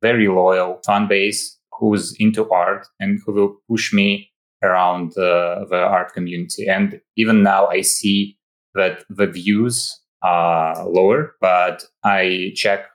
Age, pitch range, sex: 20-39, 90-105 Hz, male